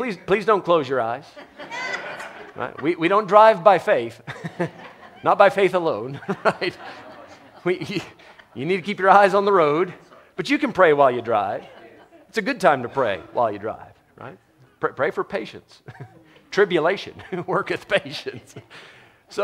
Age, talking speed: 40-59, 165 wpm